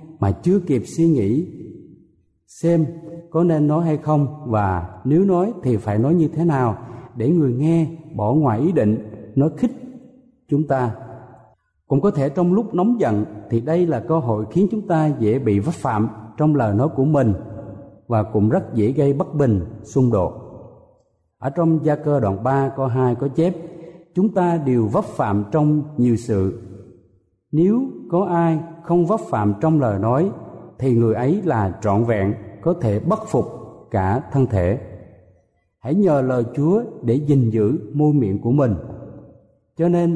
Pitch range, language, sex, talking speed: 110-160 Hz, Vietnamese, male, 175 wpm